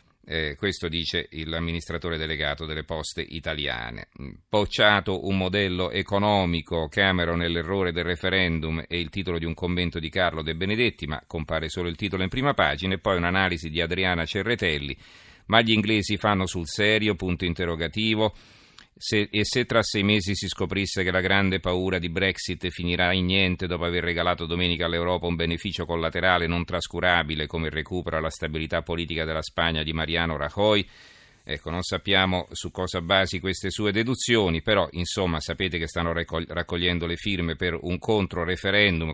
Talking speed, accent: 165 wpm, native